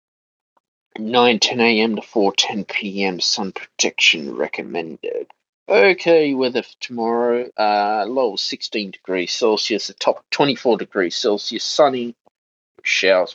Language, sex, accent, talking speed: English, male, Australian, 110 wpm